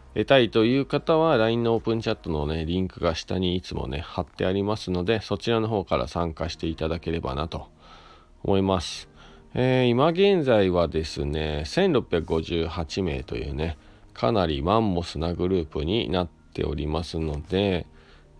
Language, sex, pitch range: Japanese, male, 80-100 Hz